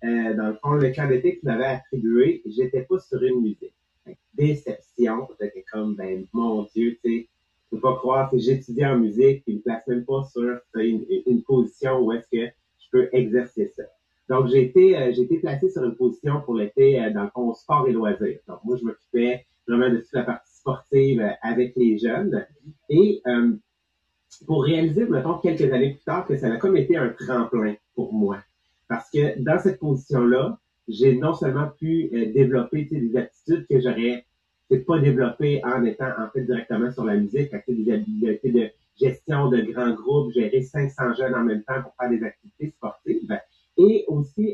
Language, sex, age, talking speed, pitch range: English, male, 30-49, 200 wpm, 120-150 Hz